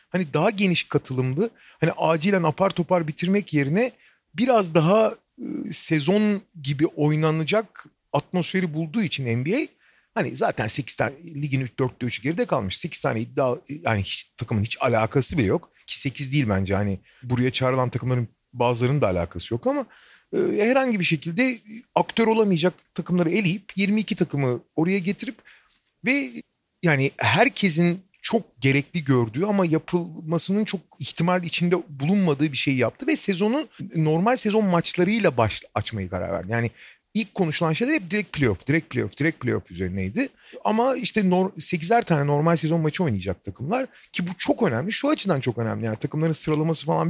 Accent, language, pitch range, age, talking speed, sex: native, Turkish, 135-195 Hz, 40-59, 160 wpm, male